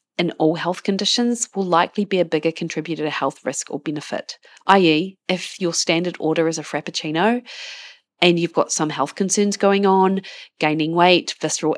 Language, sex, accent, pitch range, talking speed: English, female, Australian, 155-190 Hz, 175 wpm